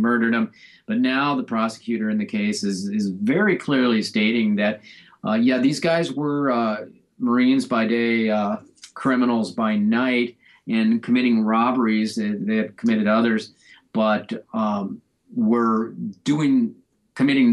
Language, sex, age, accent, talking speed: English, male, 50-69, American, 135 wpm